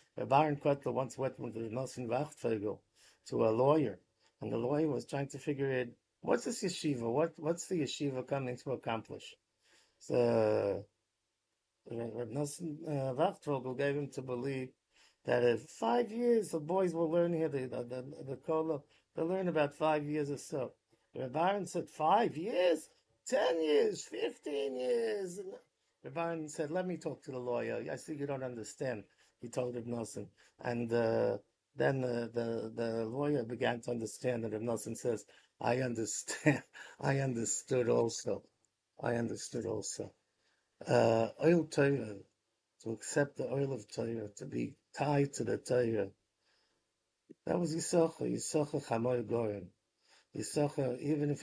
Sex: male